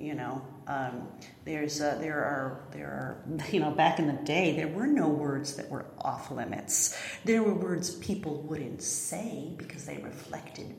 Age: 40-59